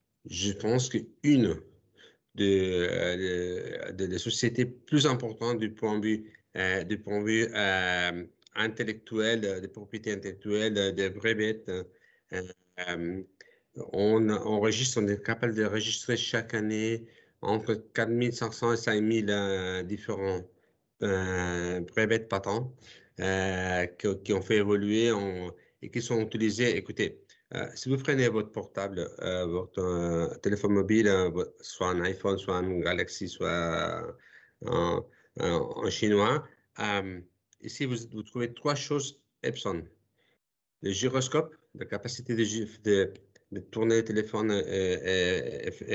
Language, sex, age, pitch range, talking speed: French, male, 50-69, 95-115 Hz, 120 wpm